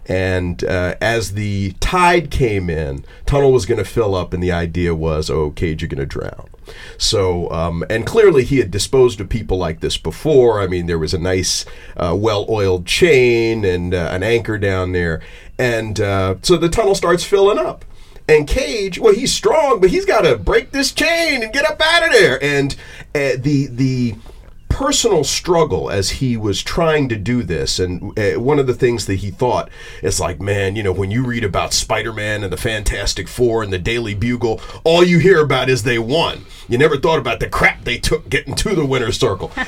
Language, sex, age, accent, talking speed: English, male, 40-59, American, 205 wpm